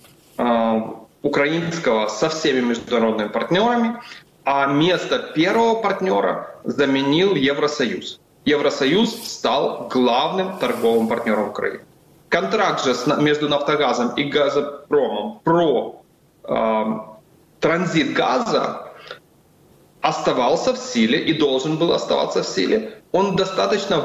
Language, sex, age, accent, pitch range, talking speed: Ukrainian, male, 30-49, native, 130-215 Hz, 95 wpm